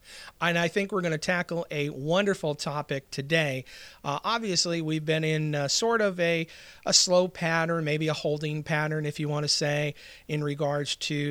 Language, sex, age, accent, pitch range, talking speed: English, male, 40-59, American, 140-170 Hz, 180 wpm